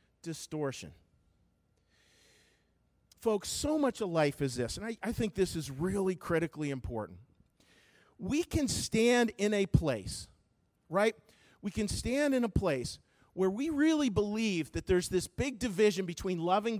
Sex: male